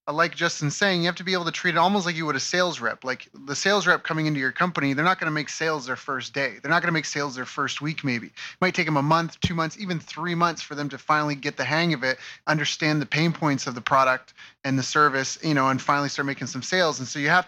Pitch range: 135-165 Hz